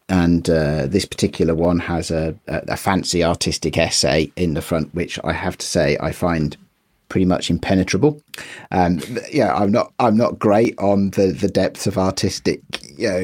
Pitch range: 85-95 Hz